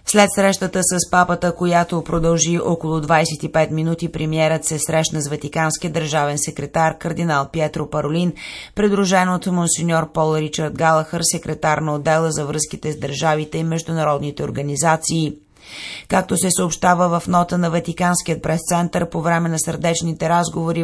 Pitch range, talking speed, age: 155-175 Hz, 140 wpm, 30-49